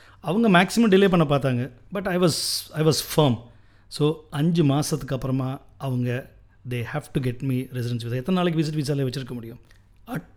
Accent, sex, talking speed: native, male, 175 wpm